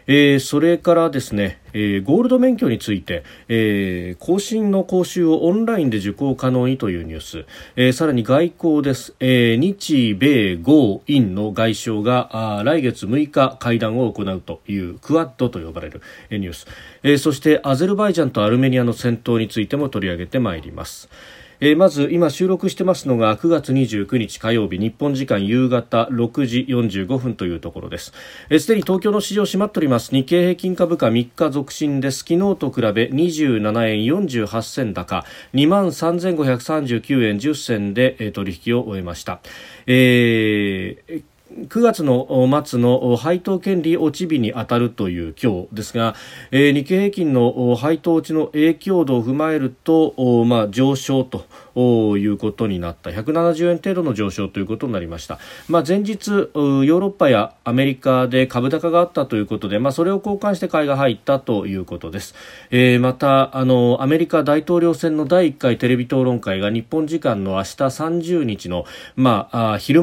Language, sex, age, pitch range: Japanese, male, 40-59, 110-160 Hz